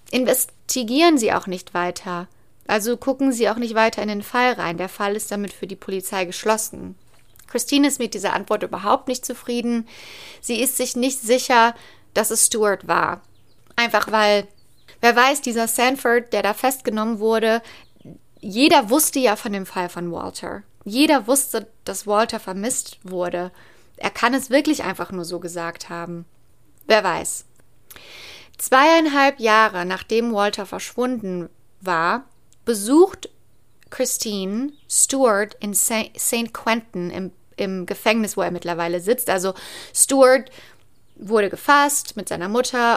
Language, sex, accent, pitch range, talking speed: German, female, German, 190-245 Hz, 140 wpm